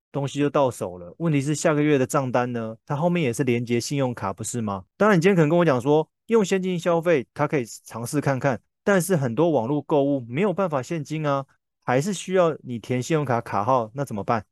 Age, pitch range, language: 20-39, 115-155 Hz, Chinese